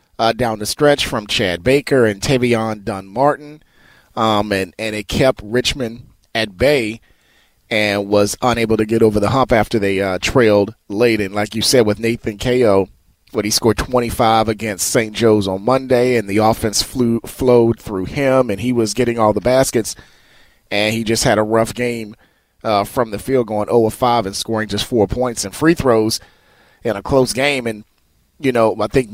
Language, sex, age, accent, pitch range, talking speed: English, male, 30-49, American, 105-130 Hz, 185 wpm